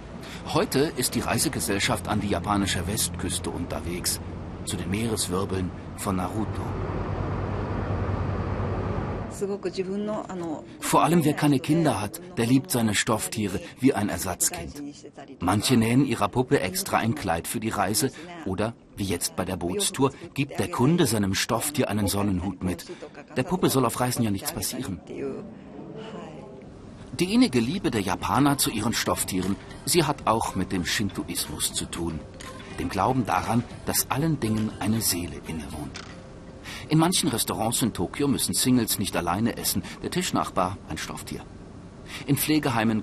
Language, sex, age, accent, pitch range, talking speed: German, male, 40-59, German, 95-130 Hz, 140 wpm